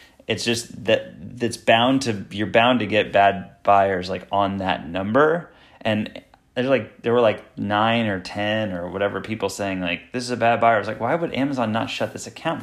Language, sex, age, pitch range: English, male, 30-49, 100-120 Hz